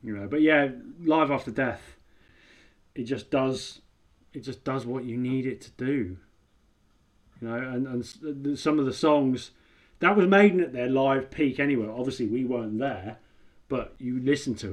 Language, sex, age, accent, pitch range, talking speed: English, male, 30-49, British, 110-135 Hz, 175 wpm